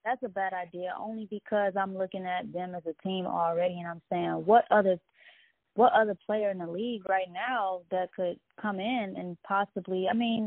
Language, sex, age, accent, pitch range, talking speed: English, female, 20-39, American, 170-210 Hz, 200 wpm